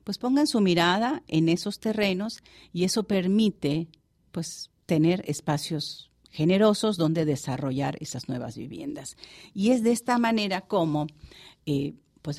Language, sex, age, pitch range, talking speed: English, female, 50-69, 150-190 Hz, 120 wpm